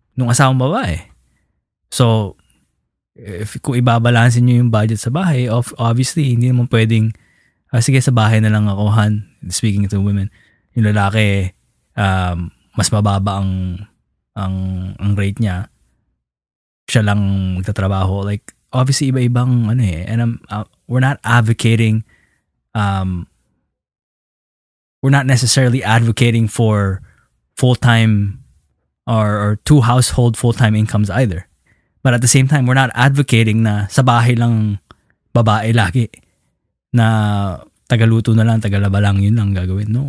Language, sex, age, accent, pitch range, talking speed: Filipino, male, 20-39, native, 105-125 Hz, 130 wpm